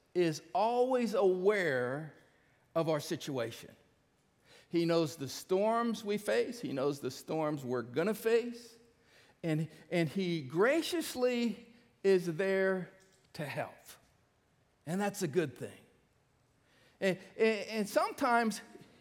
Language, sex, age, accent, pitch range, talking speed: English, male, 50-69, American, 155-220 Hz, 115 wpm